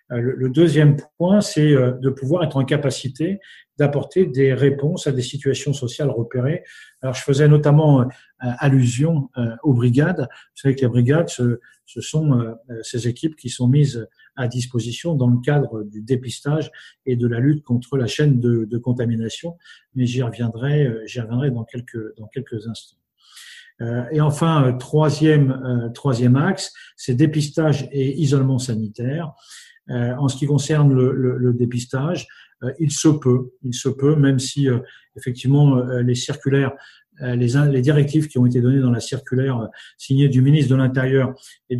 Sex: male